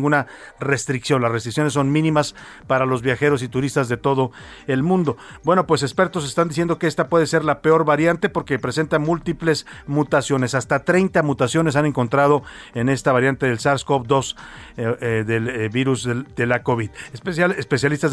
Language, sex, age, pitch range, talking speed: Spanish, male, 40-59, 130-155 Hz, 165 wpm